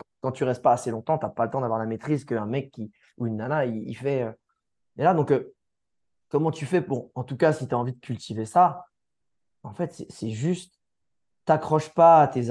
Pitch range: 120-155 Hz